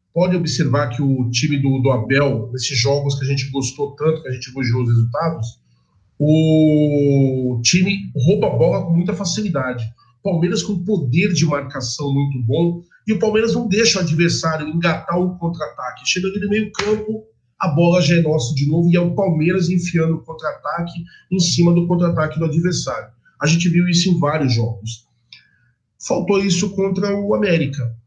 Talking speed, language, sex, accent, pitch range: 175 wpm, Portuguese, male, Brazilian, 135-180 Hz